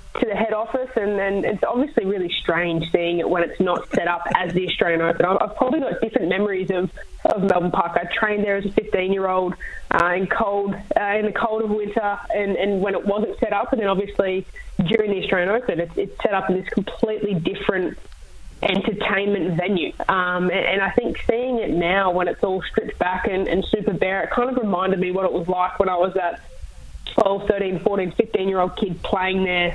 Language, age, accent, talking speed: English, 20-39, Australian, 220 wpm